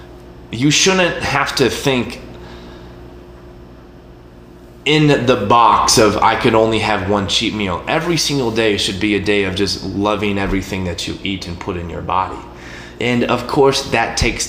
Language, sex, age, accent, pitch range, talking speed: English, male, 20-39, American, 90-110 Hz, 165 wpm